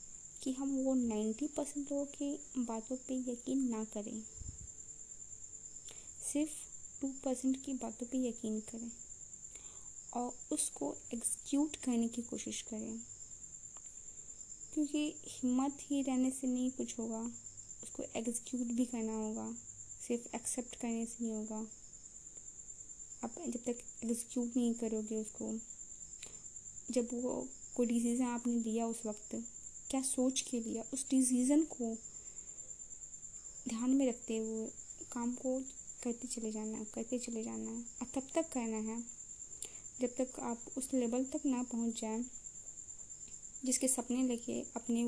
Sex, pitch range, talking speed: female, 230-260 Hz, 130 wpm